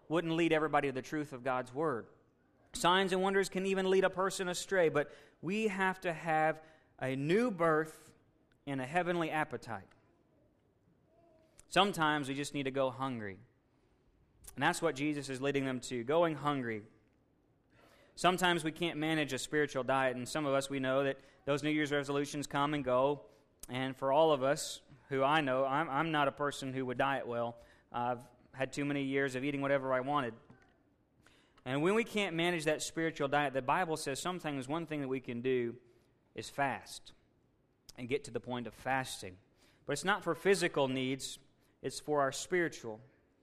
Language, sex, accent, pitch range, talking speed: English, male, American, 130-160 Hz, 185 wpm